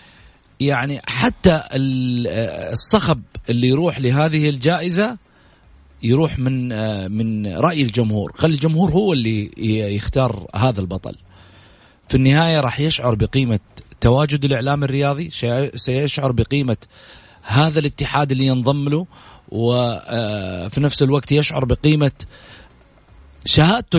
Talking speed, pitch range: 100 wpm, 120-160 Hz